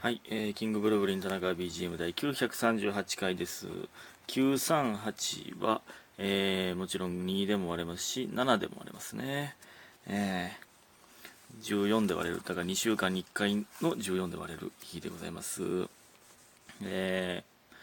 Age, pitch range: 30-49, 95-120 Hz